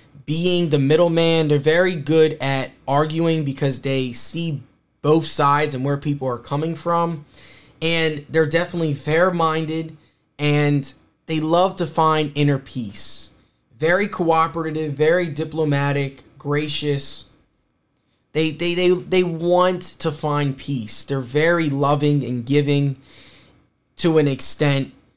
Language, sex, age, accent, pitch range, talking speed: English, male, 10-29, American, 135-160 Hz, 120 wpm